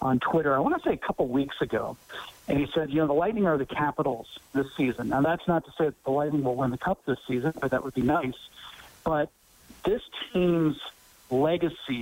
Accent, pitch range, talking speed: American, 135-165 Hz, 225 wpm